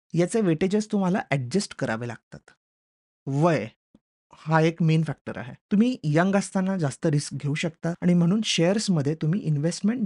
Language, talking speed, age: Marathi, 120 wpm, 30-49